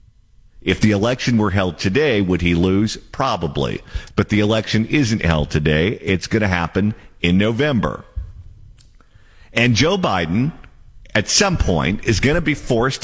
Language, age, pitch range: English, 50-69, 90-120 Hz